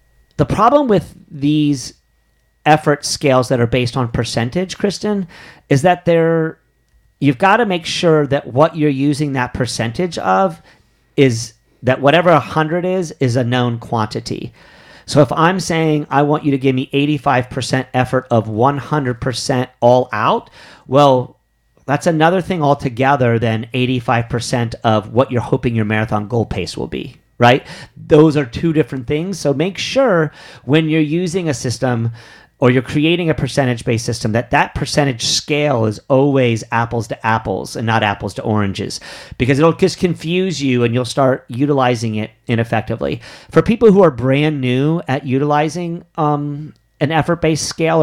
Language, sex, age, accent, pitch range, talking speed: English, male, 40-59, American, 120-155 Hz, 155 wpm